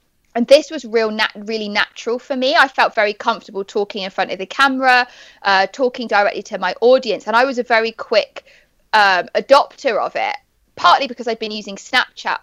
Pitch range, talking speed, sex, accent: 200-245 Hz, 200 wpm, female, British